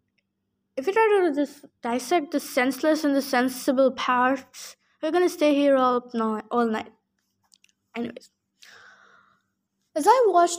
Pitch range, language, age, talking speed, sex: 250-325 Hz, English, 20-39, 135 wpm, female